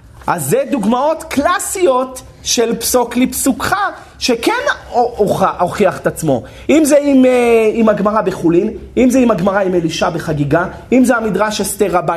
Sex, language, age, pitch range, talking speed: male, Hebrew, 30-49, 175-260 Hz, 145 wpm